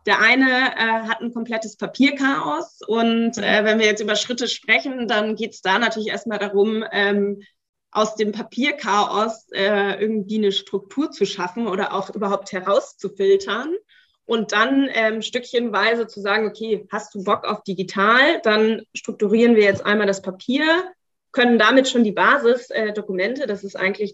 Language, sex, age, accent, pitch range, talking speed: German, female, 20-39, German, 195-230 Hz, 160 wpm